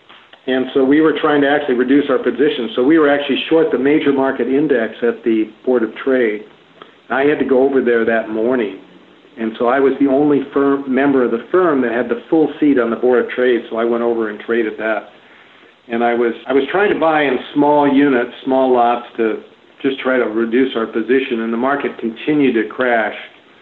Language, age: English, 50-69